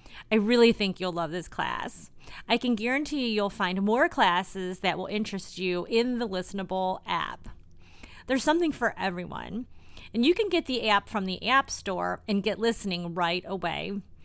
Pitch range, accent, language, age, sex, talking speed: 180-230 Hz, American, English, 30-49, female, 175 wpm